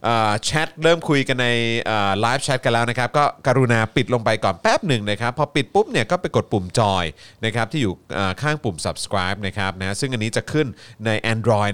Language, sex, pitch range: Thai, male, 100-135 Hz